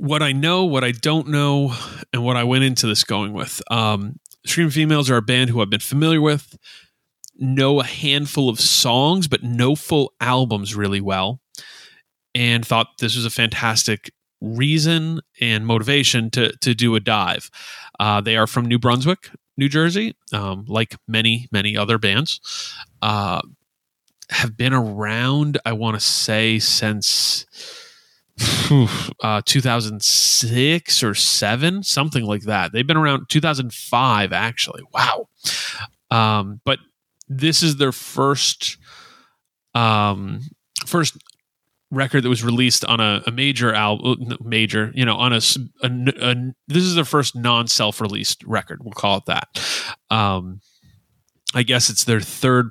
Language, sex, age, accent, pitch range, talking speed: English, male, 30-49, American, 110-140 Hz, 150 wpm